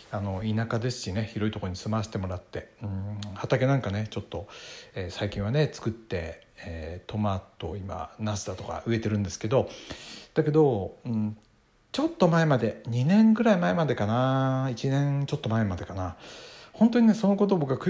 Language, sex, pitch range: Japanese, male, 105-140 Hz